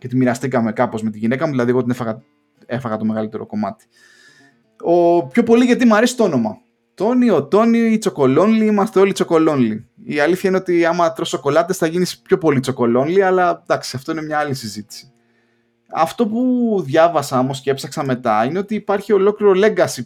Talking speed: 185 wpm